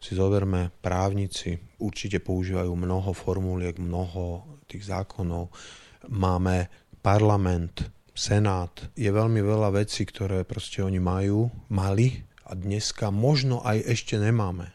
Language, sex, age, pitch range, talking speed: Slovak, male, 30-49, 95-115 Hz, 115 wpm